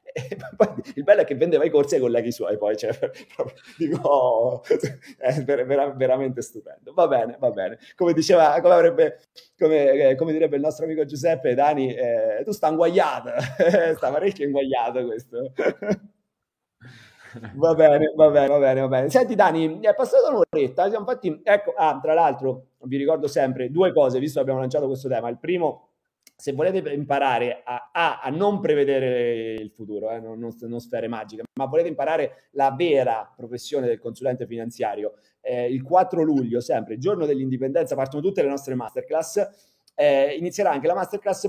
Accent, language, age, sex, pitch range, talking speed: native, Italian, 30-49, male, 130-205 Hz, 170 wpm